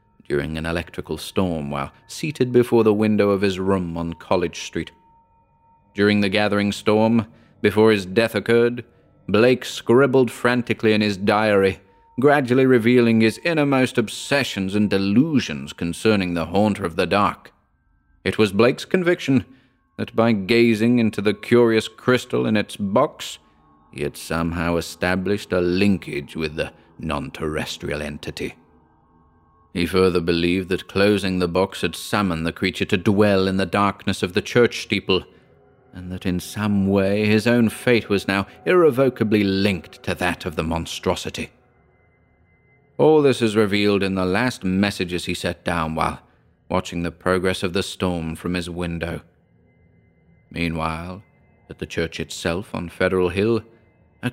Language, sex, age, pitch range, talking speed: English, male, 30-49, 85-110 Hz, 145 wpm